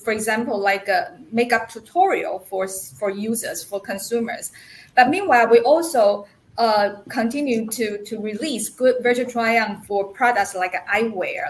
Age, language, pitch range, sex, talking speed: 20-39, English, 205-255 Hz, female, 140 wpm